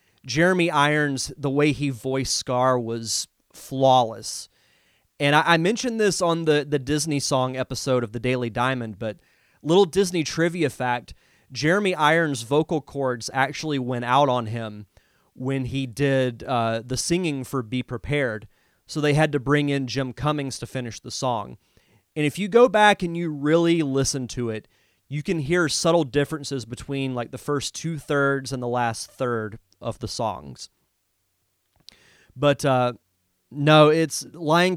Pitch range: 120-150 Hz